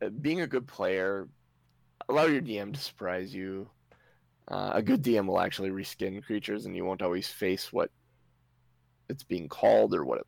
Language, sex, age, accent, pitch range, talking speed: English, male, 20-39, American, 90-110 Hz, 175 wpm